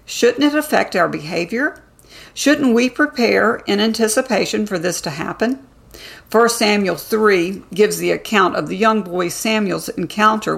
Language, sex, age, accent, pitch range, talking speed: English, female, 50-69, American, 170-225 Hz, 145 wpm